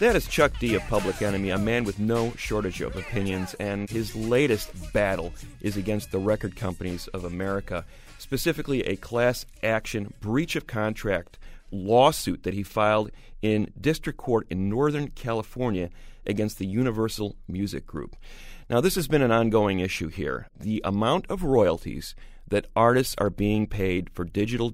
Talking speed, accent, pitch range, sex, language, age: 155 wpm, American, 95-120 Hz, male, English, 40-59